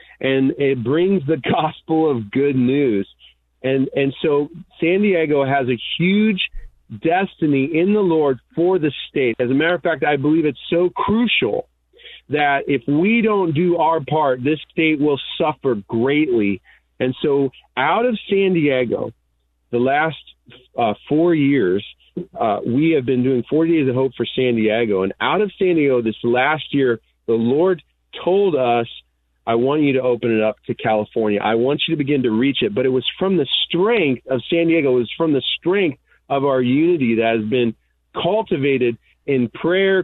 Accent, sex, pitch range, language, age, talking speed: American, male, 125-170 Hz, English, 40-59, 180 wpm